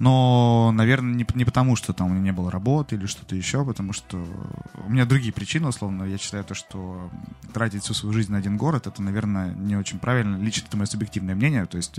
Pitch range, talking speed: 95-120 Hz, 225 wpm